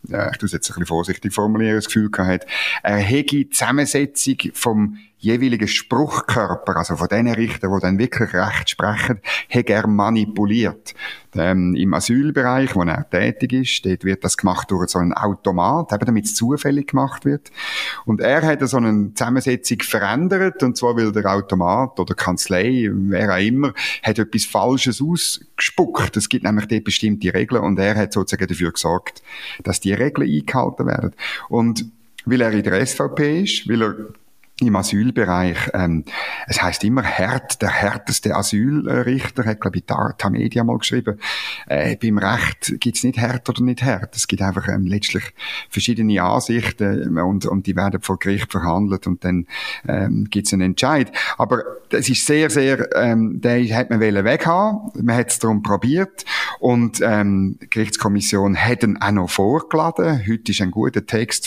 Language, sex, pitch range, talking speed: German, male, 95-125 Hz, 170 wpm